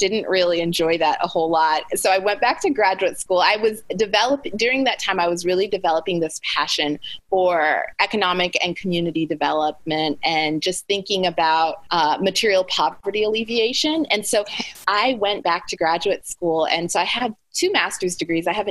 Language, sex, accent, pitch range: English, female, American, 170-210 Hz